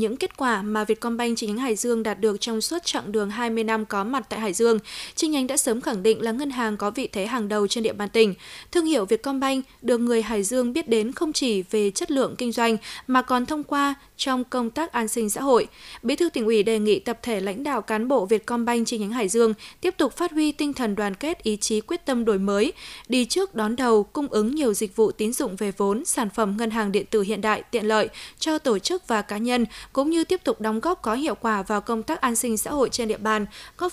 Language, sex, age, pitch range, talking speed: Vietnamese, female, 20-39, 215-270 Hz, 260 wpm